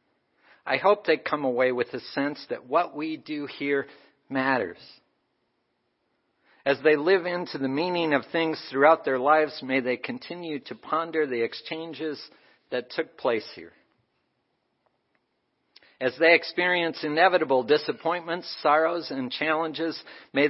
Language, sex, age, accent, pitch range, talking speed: English, male, 50-69, American, 130-160 Hz, 130 wpm